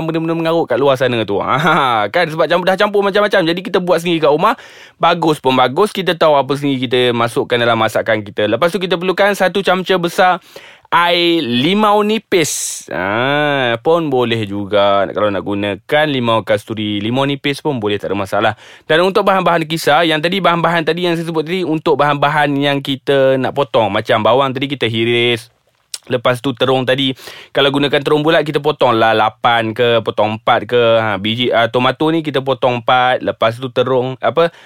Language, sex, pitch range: Malay, male, 125-170 Hz